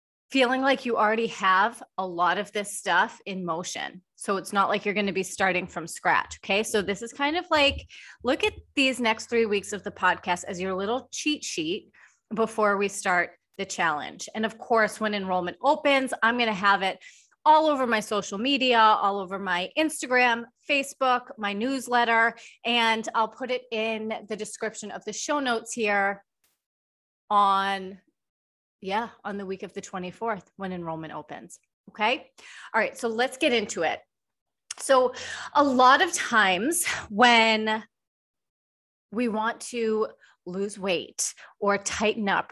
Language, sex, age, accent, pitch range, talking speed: English, female, 30-49, American, 195-255 Hz, 165 wpm